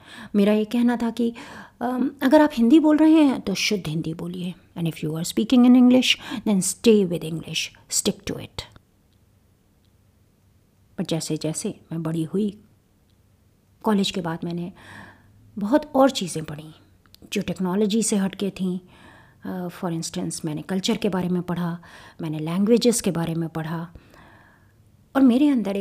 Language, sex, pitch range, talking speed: Hindi, female, 155-220 Hz, 150 wpm